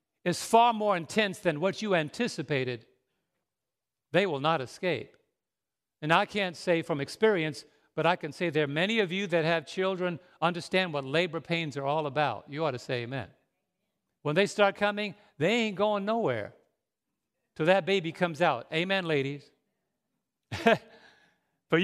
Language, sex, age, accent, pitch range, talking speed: English, male, 50-69, American, 150-205 Hz, 160 wpm